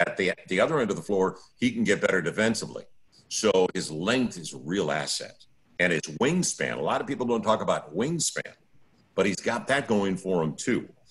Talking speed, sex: 215 wpm, male